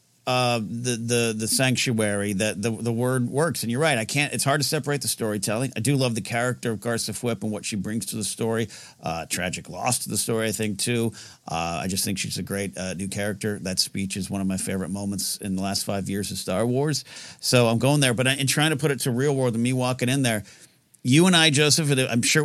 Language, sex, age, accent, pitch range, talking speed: English, male, 50-69, American, 115-140 Hz, 250 wpm